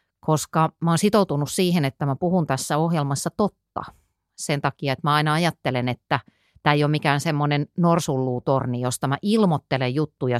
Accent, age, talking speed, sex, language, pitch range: native, 30-49, 160 wpm, female, Finnish, 130-180 Hz